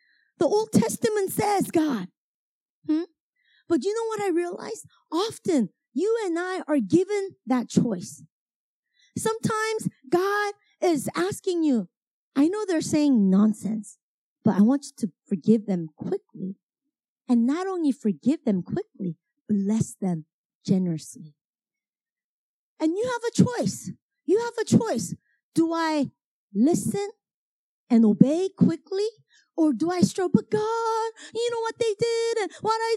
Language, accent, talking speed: English, American, 140 wpm